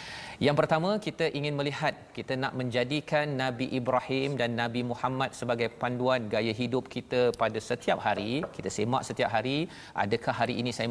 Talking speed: 160 wpm